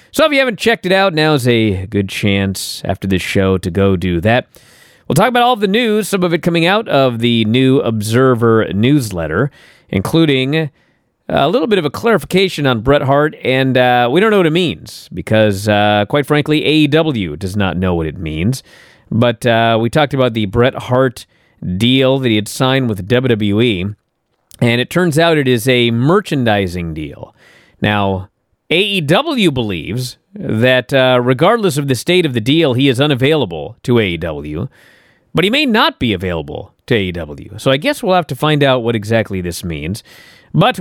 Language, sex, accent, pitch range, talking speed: English, male, American, 105-145 Hz, 185 wpm